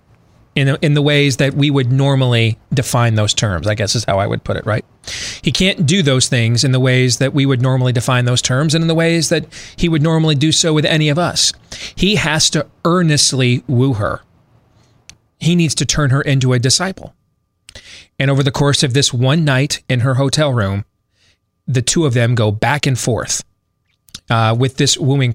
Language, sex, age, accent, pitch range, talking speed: English, male, 40-59, American, 110-145 Hz, 205 wpm